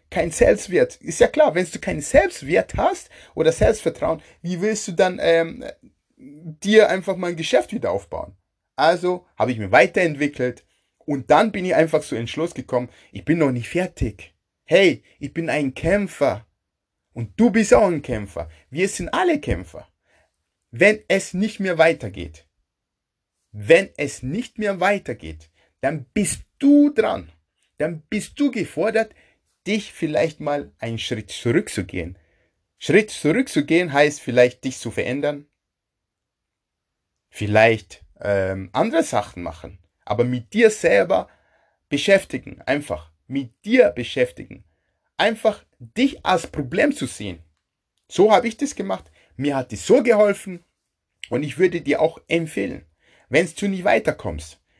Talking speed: 140 wpm